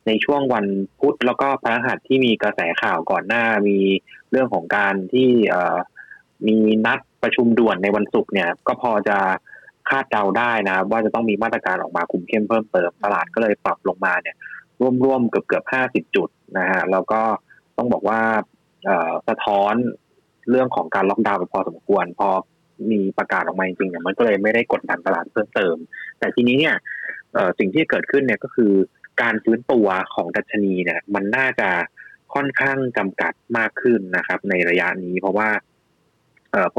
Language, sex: Thai, male